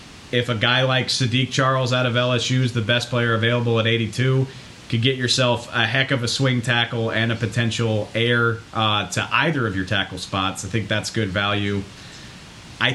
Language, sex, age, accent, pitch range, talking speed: English, male, 30-49, American, 110-130 Hz, 195 wpm